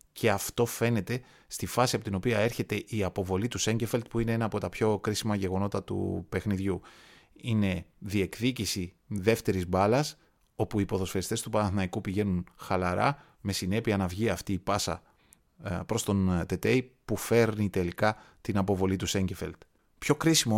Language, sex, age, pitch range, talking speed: Greek, male, 30-49, 95-115 Hz, 155 wpm